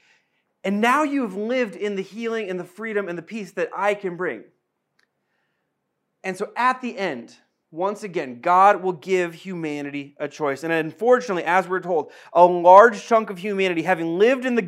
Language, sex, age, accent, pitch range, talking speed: English, male, 30-49, American, 165-205 Hz, 185 wpm